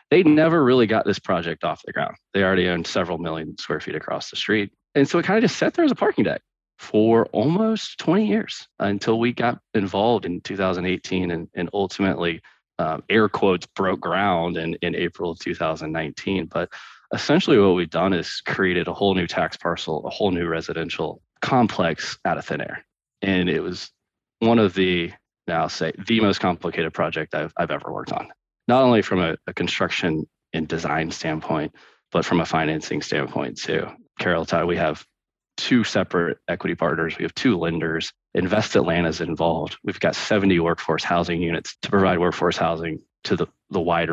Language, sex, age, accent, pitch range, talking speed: English, male, 20-39, American, 85-105 Hz, 190 wpm